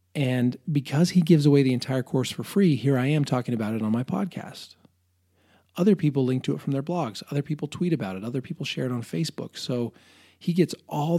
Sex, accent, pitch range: male, American, 110-145 Hz